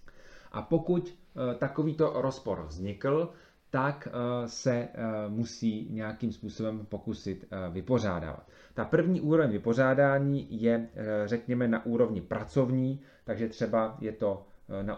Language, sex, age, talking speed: Czech, male, 30-49, 130 wpm